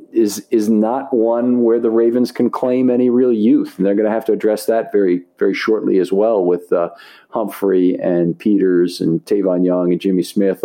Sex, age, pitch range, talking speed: male, 50-69, 100-150 Hz, 205 wpm